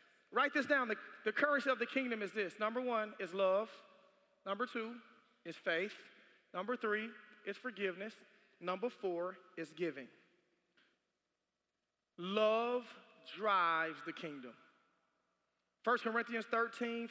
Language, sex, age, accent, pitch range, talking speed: English, male, 30-49, American, 185-230 Hz, 120 wpm